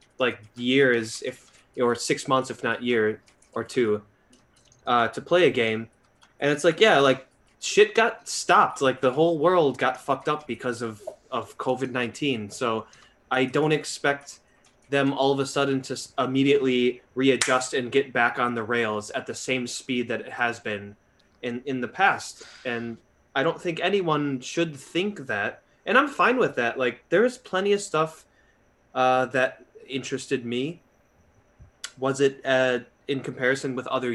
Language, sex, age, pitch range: English, male, 20-39, 120-135 Hz